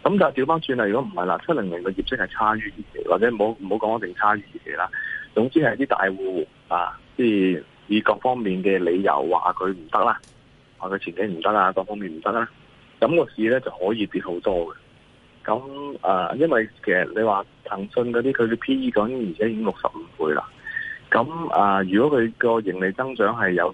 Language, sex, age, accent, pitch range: Chinese, male, 20-39, native, 95-140 Hz